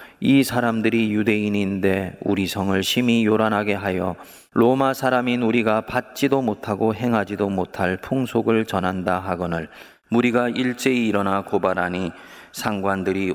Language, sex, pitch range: Korean, male, 90-110 Hz